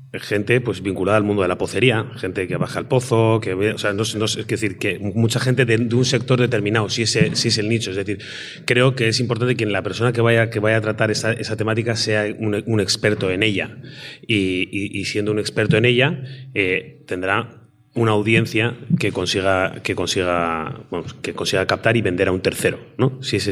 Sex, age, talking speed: male, 30-49, 220 wpm